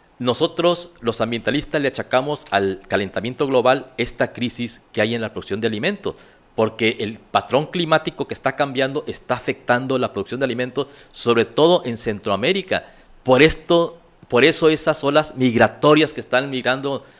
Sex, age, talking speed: male, 50-69, 155 wpm